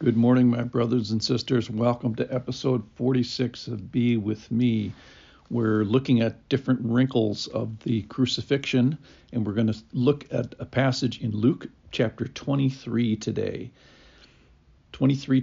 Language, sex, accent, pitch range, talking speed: English, male, American, 110-130 Hz, 135 wpm